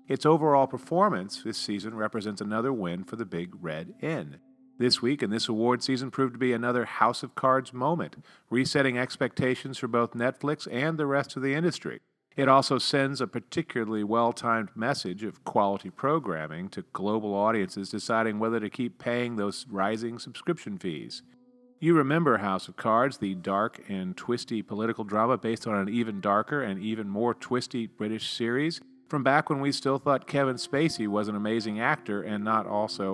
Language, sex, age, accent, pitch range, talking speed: English, male, 40-59, American, 105-135 Hz, 175 wpm